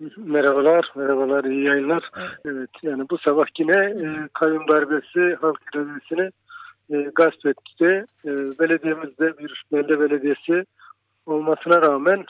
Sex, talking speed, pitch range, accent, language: male, 115 wpm, 145-170 Hz, Turkish, German